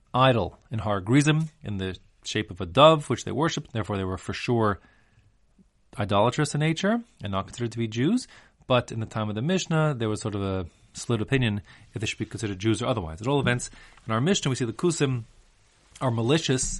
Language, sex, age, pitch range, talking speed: English, male, 30-49, 100-130 Hz, 215 wpm